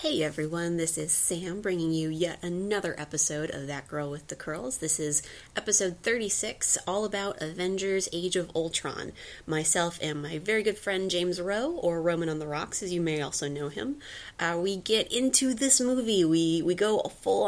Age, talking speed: 30-49, 190 wpm